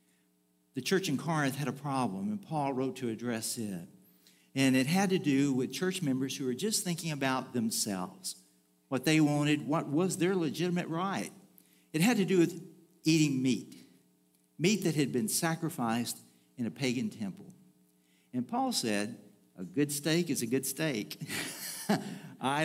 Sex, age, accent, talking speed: male, 60-79, American, 165 wpm